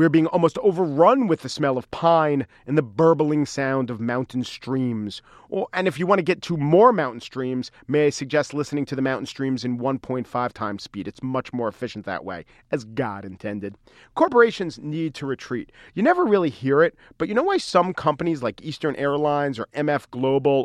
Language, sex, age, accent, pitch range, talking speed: English, male, 40-59, American, 125-180 Hz, 200 wpm